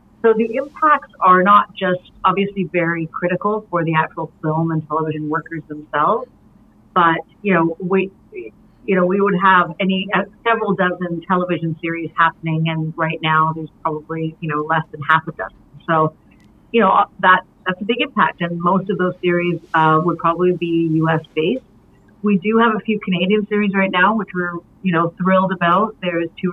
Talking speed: 185 wpm